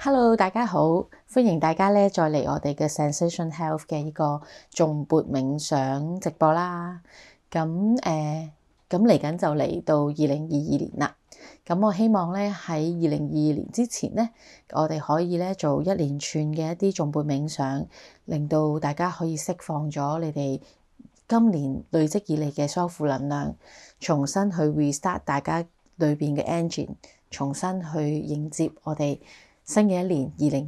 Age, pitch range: 30-49, 150-185 Hz